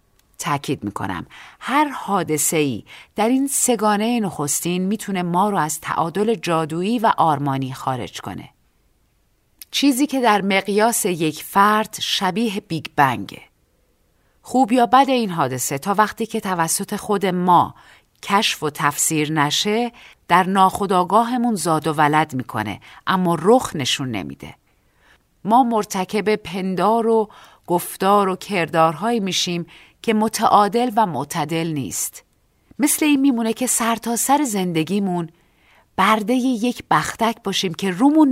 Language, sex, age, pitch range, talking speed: Persian, female, 40-59, 155-220 Hz, 125 wpm